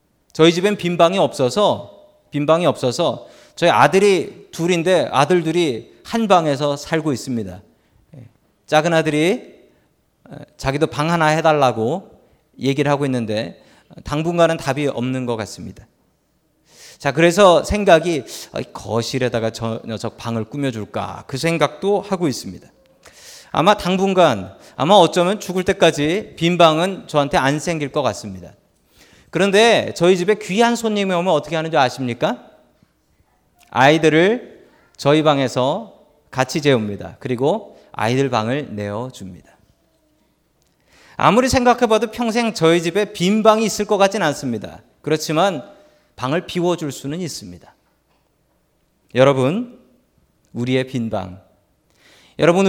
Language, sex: Korean, male